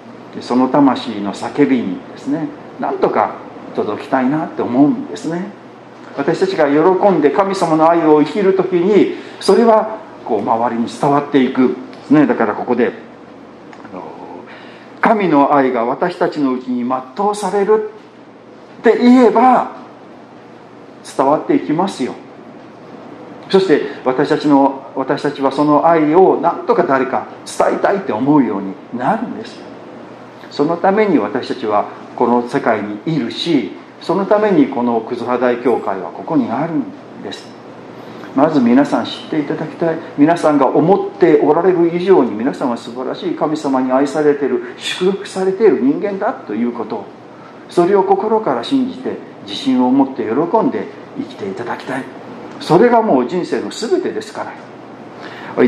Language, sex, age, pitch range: Japanese, male, 50-69, 140-225 Hz